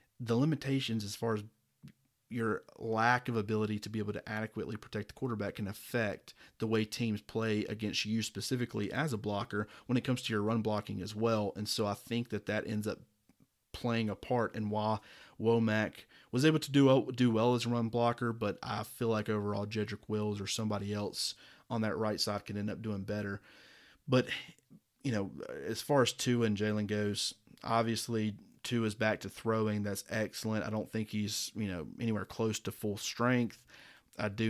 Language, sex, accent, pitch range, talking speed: English, male, American, 105-120 Hz, 195 wpm